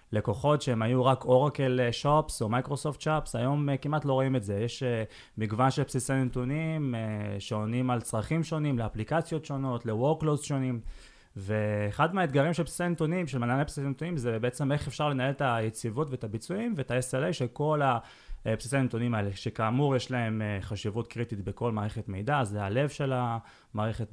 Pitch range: 110-140 Hz